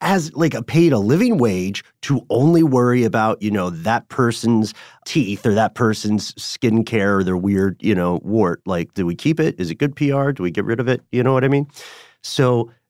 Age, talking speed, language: 40-59, 225 wpm, English